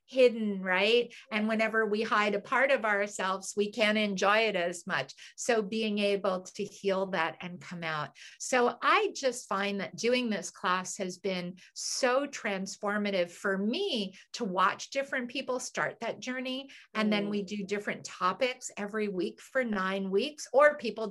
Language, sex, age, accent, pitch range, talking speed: English, female, 50-69, American, 185-235 Hz, 170 wpm